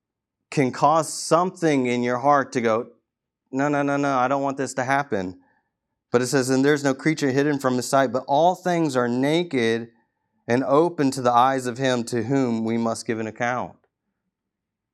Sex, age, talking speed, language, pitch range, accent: male, 30-49, 195 wpm, English, 115-150 Hz, American